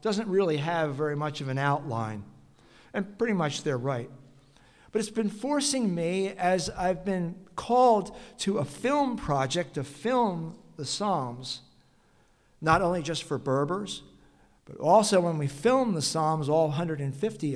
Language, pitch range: English, 140-185 Hz